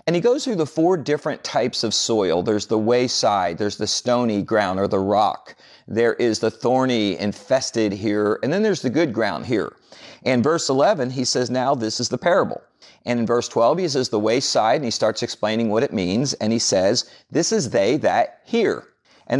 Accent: American